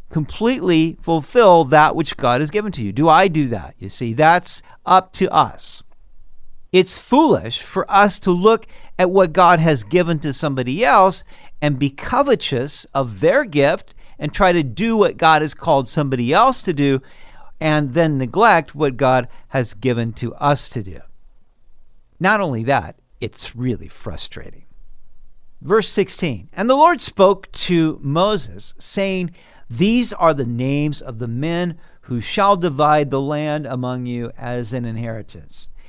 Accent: American